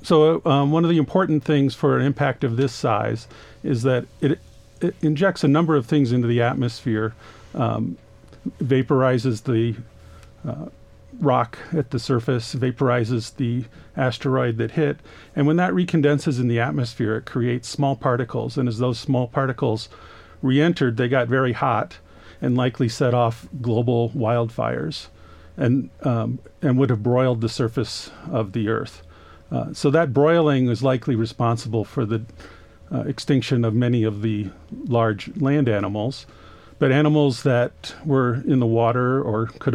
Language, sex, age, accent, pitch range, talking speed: English, male, 50-69, American, 115-140 Hz, 155 wpm